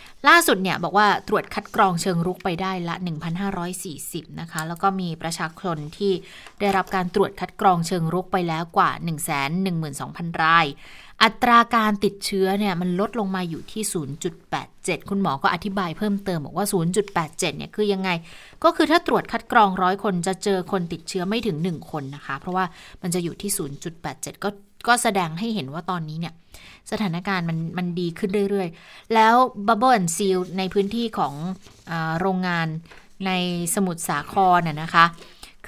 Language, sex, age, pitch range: Thai, female, 20-39, 170-205 Hz